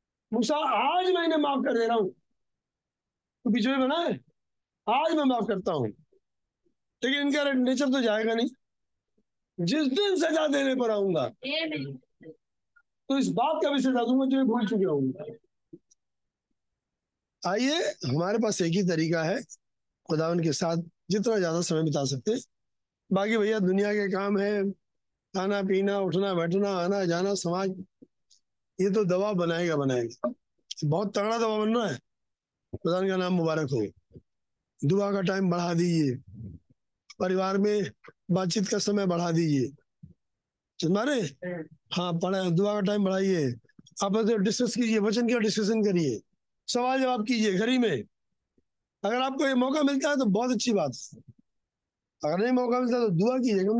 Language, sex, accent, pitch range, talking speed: Hindi, male, native, 175-240 Hz, 110 wpm